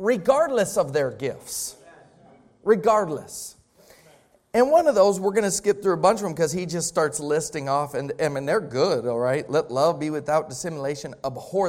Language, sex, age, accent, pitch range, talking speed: English, male, 40-59, American, 130-180 Hz, 185 wpm